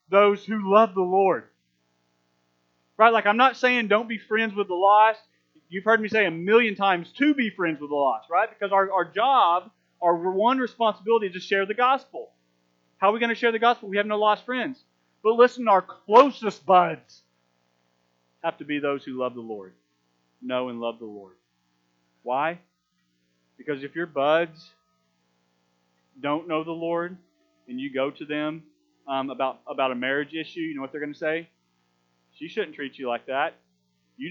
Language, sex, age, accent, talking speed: English, male, 40-59, American, 185 wpm